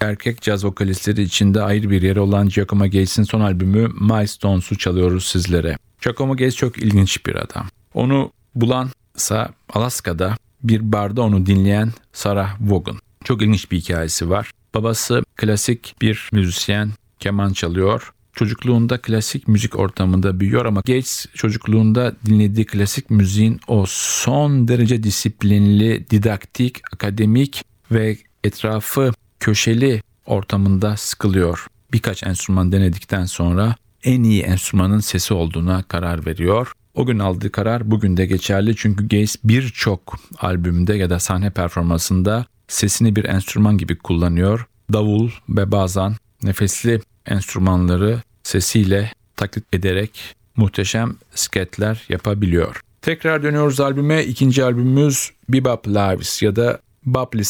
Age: 50-69